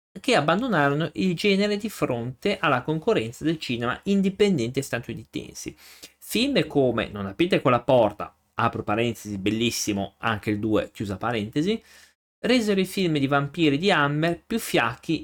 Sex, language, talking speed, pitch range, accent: male, Italian, 140 wpm, 110-140 Hz, native